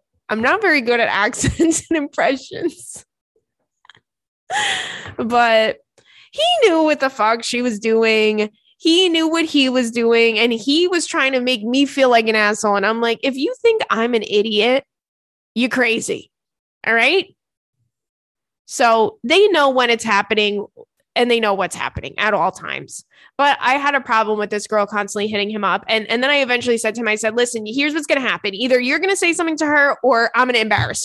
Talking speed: 190 wpm